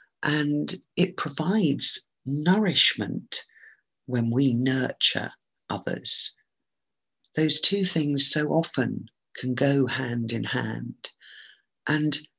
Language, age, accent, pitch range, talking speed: English, 40-59, British, 130-160 Hz, 90 wpm